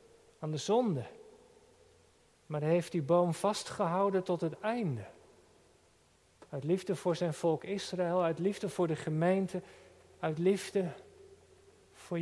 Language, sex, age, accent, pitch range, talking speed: Dutch, male, 50-69, Dutch, 160-220 Hz, 130 wpm